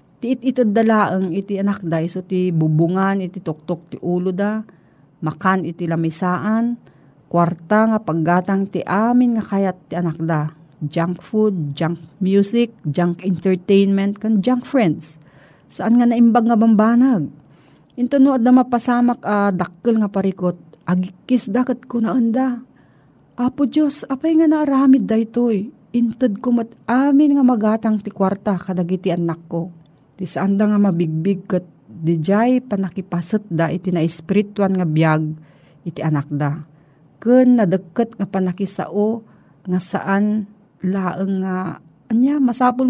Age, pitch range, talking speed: 40-59, 170-230 Hz, 140 wpm